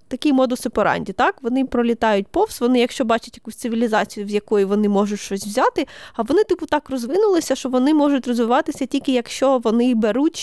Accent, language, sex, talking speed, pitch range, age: native, Ukrainian, female, 180 wpm, 225-295 Hz, 20-39